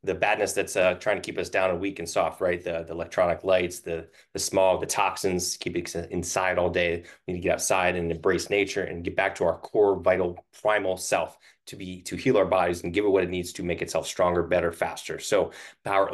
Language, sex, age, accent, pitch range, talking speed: English, male, 20-39, American, 85-100 Hz, 240 wpm